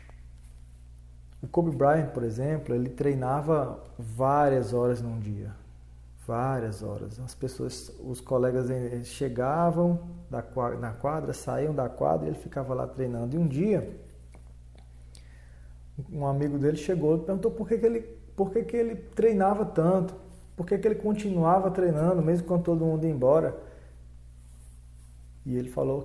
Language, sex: Portuguese, male